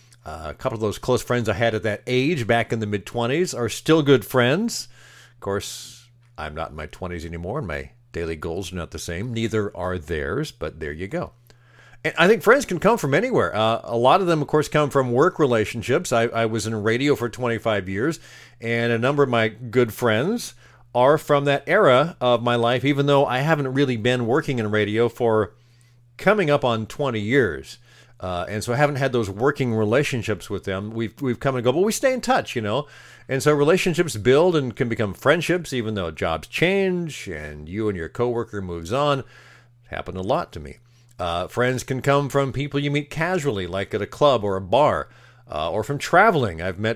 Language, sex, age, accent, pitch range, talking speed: English, male, 50-69, American, 110-140 Hz, 215 wpm